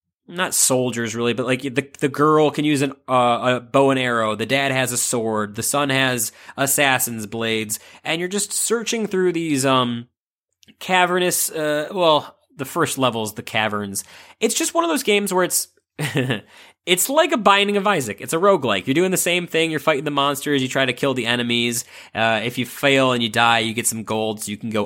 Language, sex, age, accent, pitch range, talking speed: English, male, 20-39, American, 115-150 Hz, 215 wpm